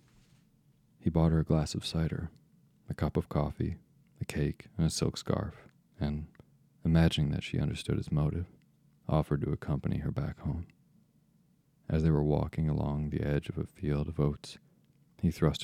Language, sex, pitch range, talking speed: English, male, 70-80 Hz, 170 wpm